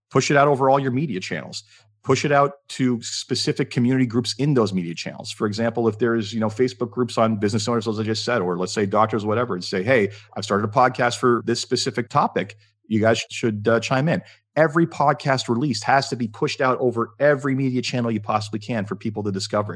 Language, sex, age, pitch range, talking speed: English, male, 40-59, 105-135 Hz, 230 wpm